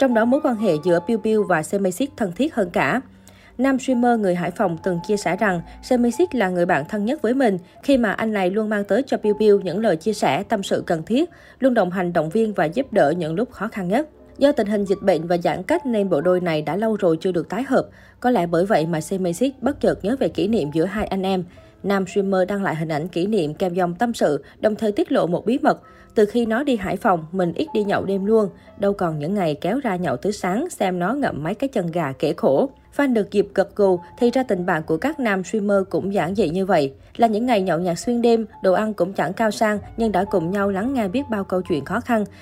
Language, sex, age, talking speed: Vietnamese, female, 20-39, 265 wpm